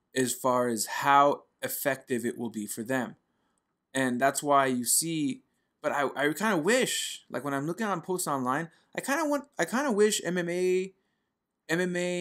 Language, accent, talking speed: English, American, 185 wpm